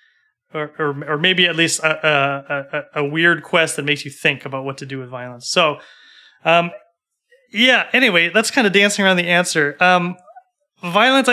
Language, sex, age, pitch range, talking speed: English, male, 30-49, 140-185 Hz, 185 wpm